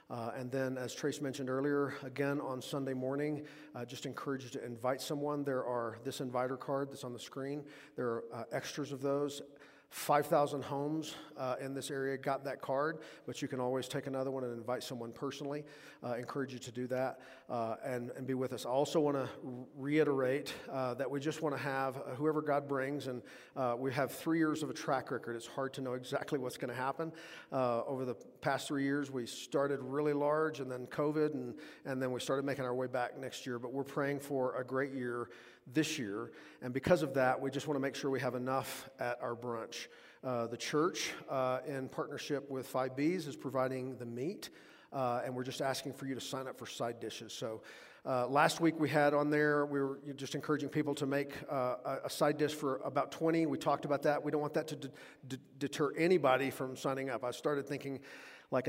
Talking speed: 220 wpm